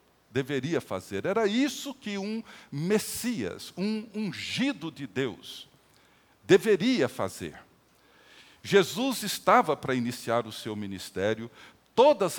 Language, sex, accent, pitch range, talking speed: Portuguese, male, Brazilian, 150-220 Hz, 100 wpm